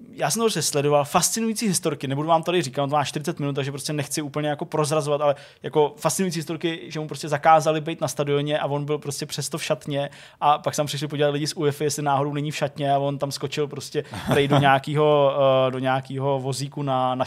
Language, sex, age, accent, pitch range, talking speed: Czech, male, 20-39, native, 145-175 Hz, 215 wpm